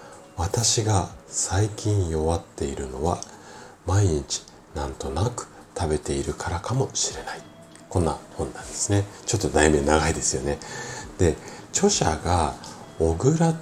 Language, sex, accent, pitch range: Japanese, male, native, 80-120 Hz